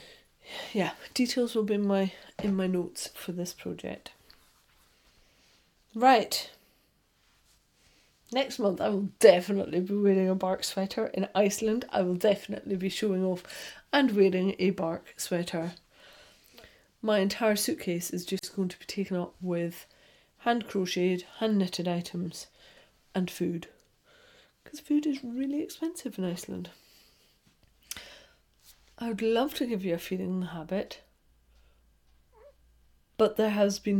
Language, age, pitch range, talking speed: English, 40-59, 175-215 Hz, 130 wpm